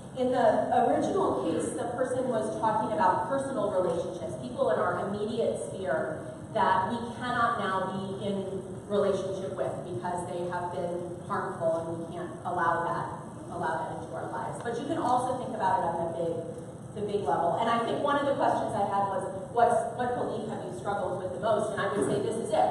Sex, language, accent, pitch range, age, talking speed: female, English, American, 185-245 Hz, 30-49, 205 wpm